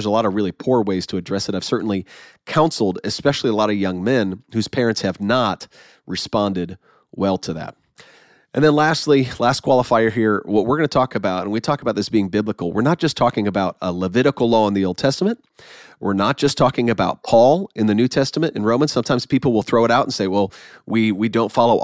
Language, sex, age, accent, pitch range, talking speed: English, male, 30-49, American, 105-135 Hz, 230 wpm